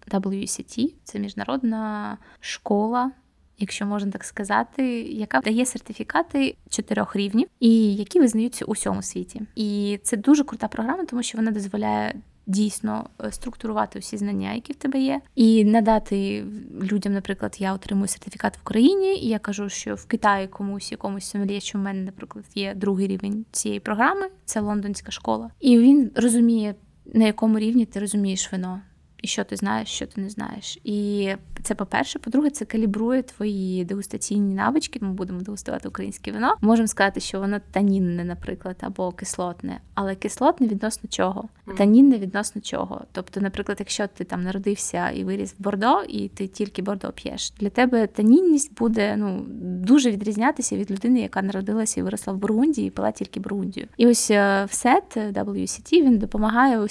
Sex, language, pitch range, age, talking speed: female, Ukrainian, 195-235 Hz, 20-39, 160 wpm